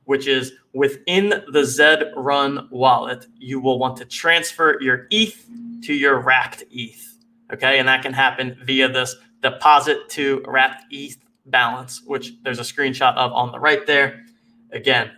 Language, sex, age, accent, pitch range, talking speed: English, male, 20-39, American, 130-175 Hz, 160 wpm